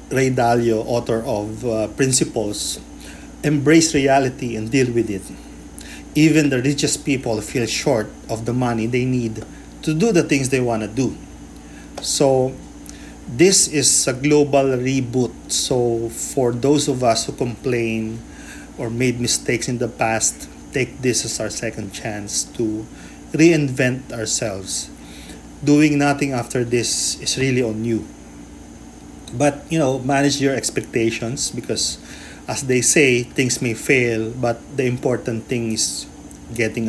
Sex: male